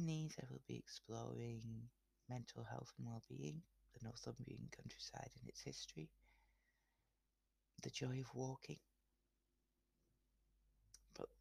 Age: 30-49